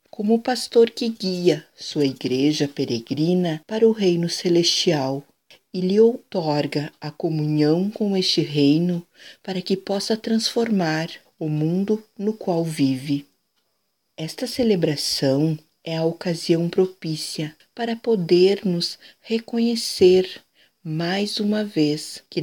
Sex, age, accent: female, 50-69, Brazilian